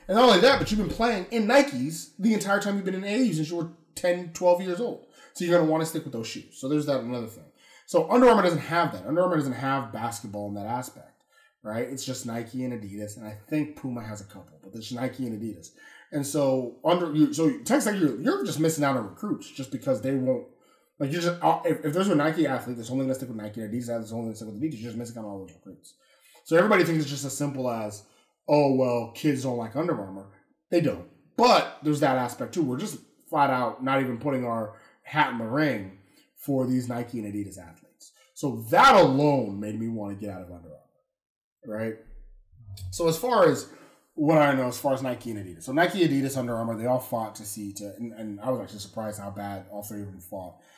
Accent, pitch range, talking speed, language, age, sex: American, 105-155 Hz, 250 wpm, English, 30-49, male